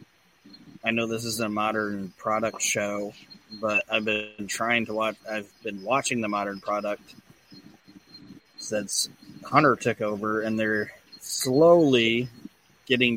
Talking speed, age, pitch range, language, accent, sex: 130 wpm, 30-49, 110-125 Hz, English, American, male